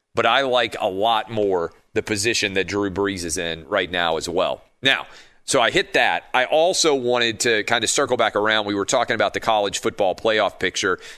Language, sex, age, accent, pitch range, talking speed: English, male, 40-59, American, 95-115 Hz, 215 wpm